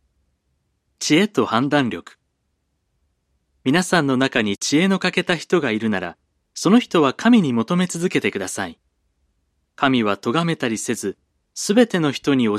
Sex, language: male, Japanese